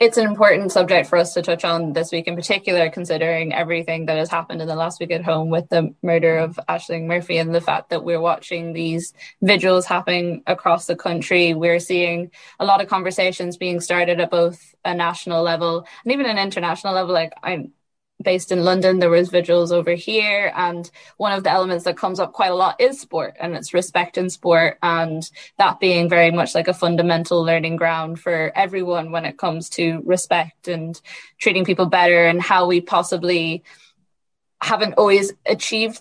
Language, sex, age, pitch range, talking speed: English, female, 10-29, 170-185 Hz, 195 wpm